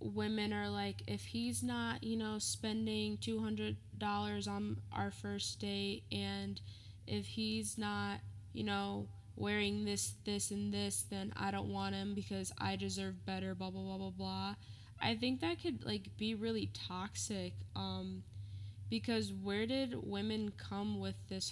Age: 10-29